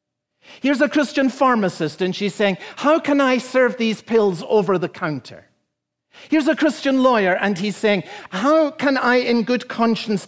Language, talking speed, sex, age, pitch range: English, 170 wpm, male, 50-69, 200-260 Hz